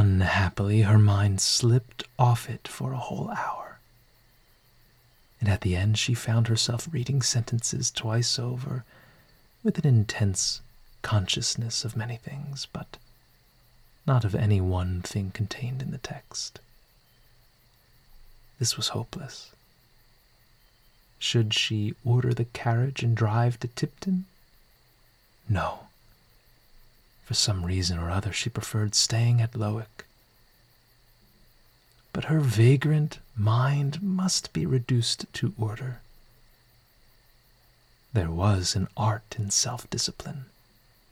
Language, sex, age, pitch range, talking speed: English, male, 30-49, 110-125 Hz, 110 wpm